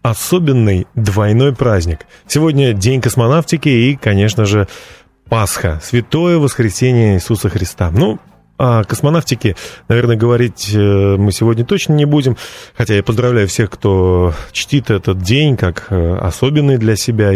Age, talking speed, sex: 30-49, 125 wpm, male